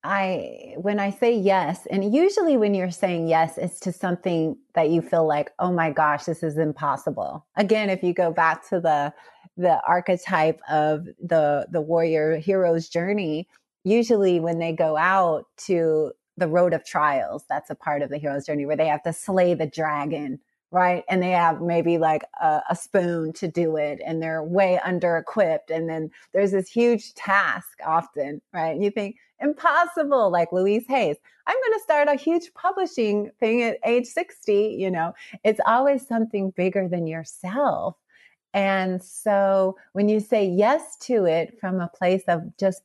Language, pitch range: English, 160-205 Hz